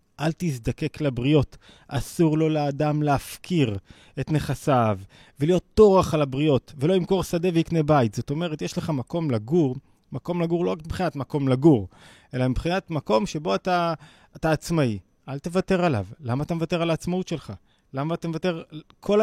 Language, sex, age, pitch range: Hebrew, male, 30-49, 125-165 Hz